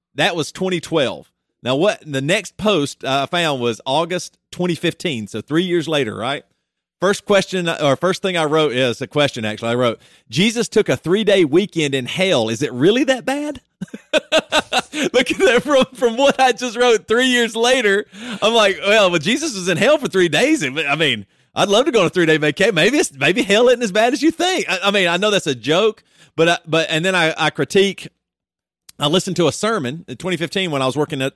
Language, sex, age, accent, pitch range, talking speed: English, male, 40-59, American, 135-195 Hz, 220 wpm